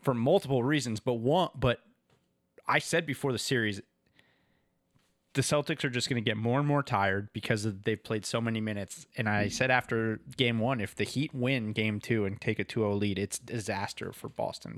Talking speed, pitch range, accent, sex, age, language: 205 wpm, 105-150 Hz, American, male, 20-39, English